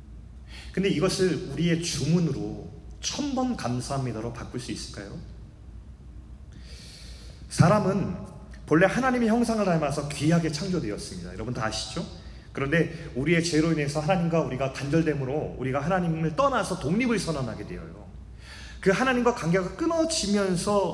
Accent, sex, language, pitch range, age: native, male, Korean, 115-185 Hz, 30-49